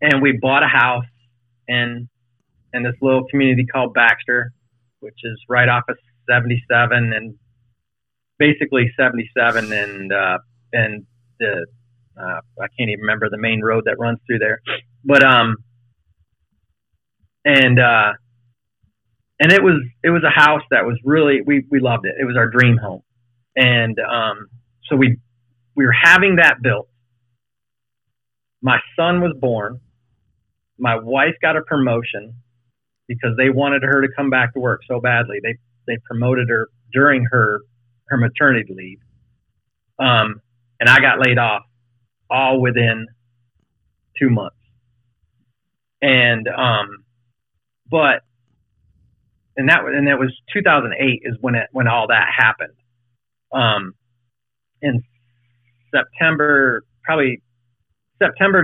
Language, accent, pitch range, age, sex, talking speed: English, American, 115-130 Hz, 30-49, male, 135 wpm